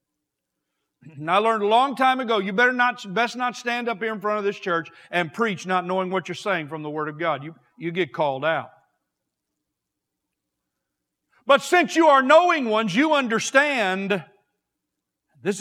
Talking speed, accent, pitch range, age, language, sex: 175 wpm, American, 140-225 Hz, 50-69, English, male